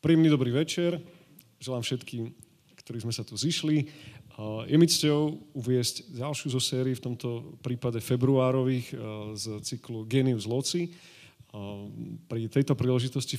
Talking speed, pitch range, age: 120 wpm, 115-135 Hz, 30-49